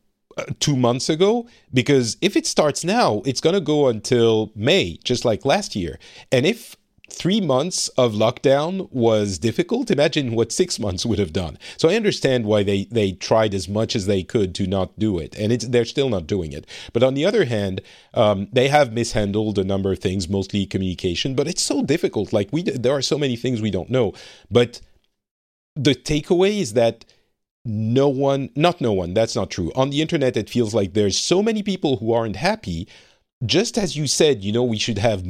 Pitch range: 105-145 Hz